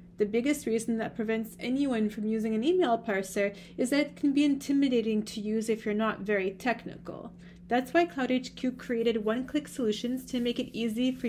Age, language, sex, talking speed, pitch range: 30-49, English, female, 185 wpm, 200-270 Hz